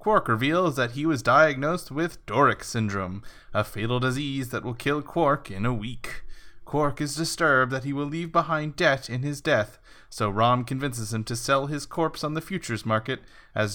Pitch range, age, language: 115-155 Hz, 20-39, English